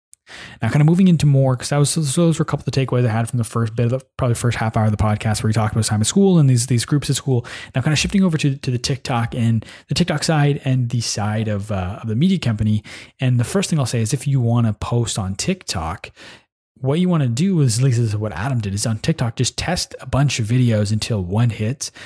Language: English